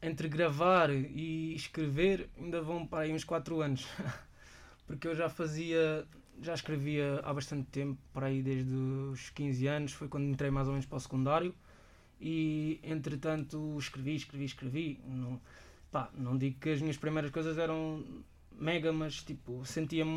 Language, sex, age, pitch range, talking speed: Portuguese, male, 20-39, 140-165 Hz, 160 wpm